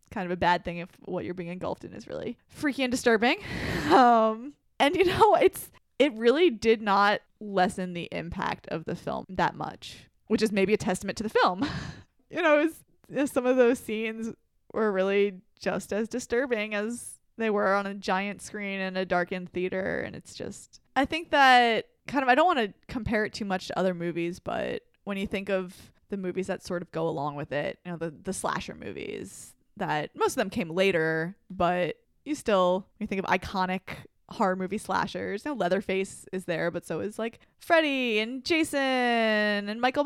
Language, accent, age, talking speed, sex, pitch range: English, American, 10-29, 195 wpm, female, 185-240 Hz